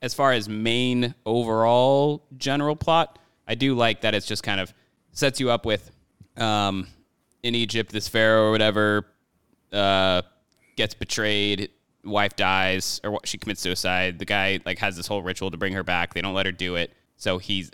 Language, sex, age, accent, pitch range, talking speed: English, male, 20-39, American, 95-120 Hz, 185 wpm